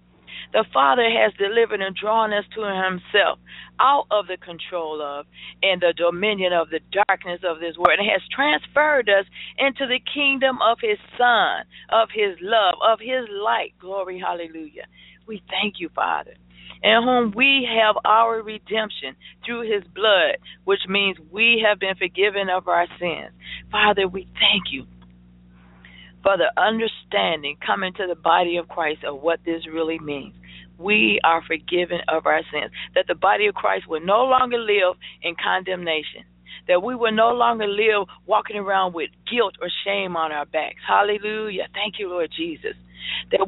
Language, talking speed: English, 165 wpm